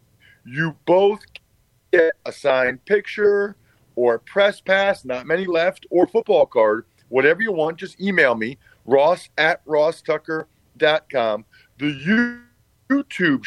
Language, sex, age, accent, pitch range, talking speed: English, male, 40-59, American, 125-180 Hz, 135 wpm